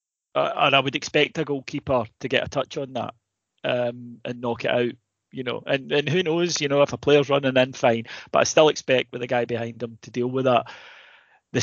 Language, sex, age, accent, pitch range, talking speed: English, male, 30-49, British, 120-145 Hz, 235 wpm